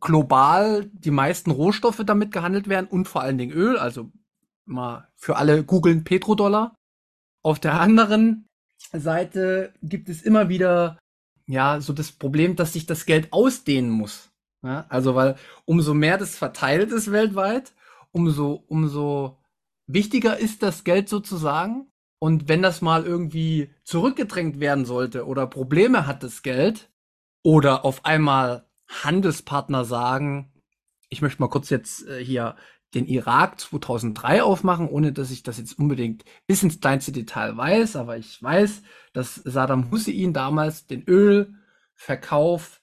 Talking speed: 140 wpm